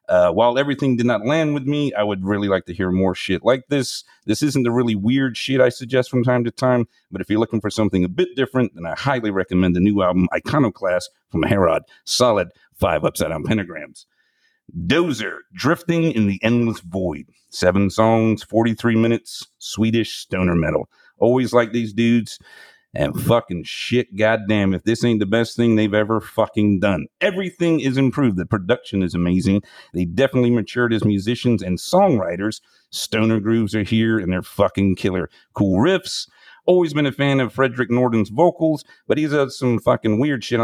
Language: English